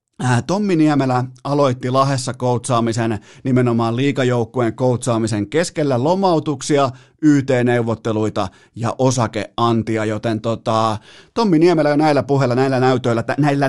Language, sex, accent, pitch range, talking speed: Finnish, male, native, 115-140 Hz, 105 wpm